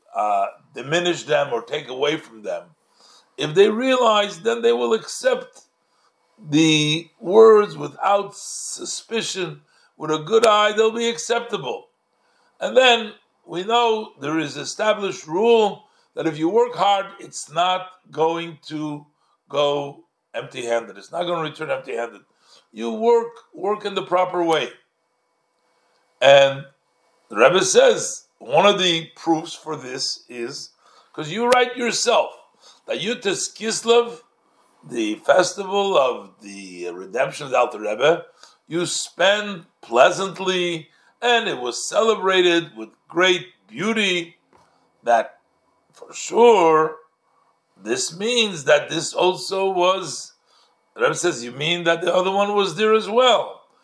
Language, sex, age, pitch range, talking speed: English, male, 60-79, 160-220 Hz, 130 wpm